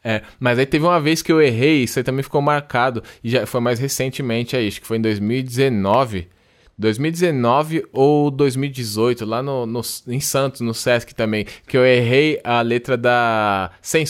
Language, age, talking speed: Portuguese, 20-39, 165 wpm